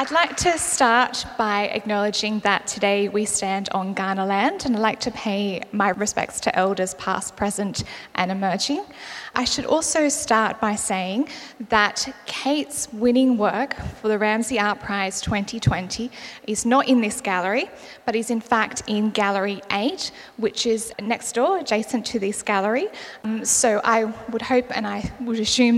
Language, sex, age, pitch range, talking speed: English, female, 10-29, 205-245 Hz, 165 wpm